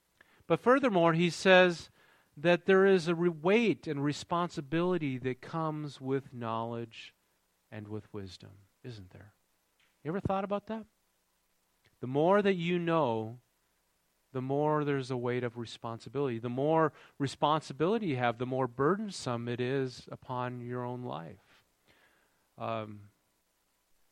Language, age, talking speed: English, 40-59, 130 wpm